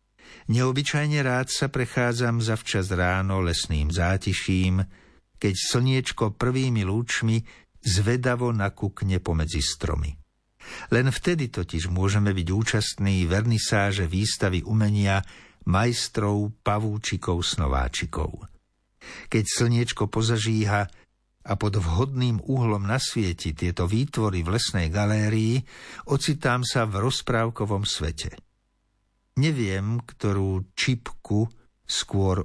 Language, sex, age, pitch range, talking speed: Slovak, male, 60-79, 95-120 Hz, 90 wpm